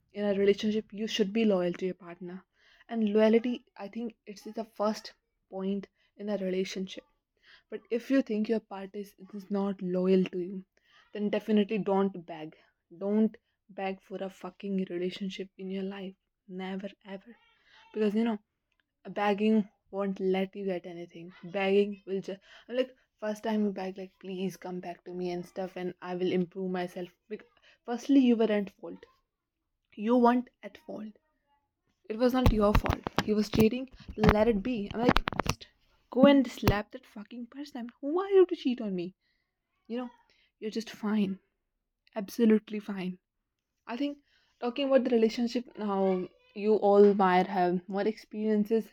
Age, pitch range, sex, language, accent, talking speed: 20-39, 190-225 Hz, female, English, Indian, 165 wpm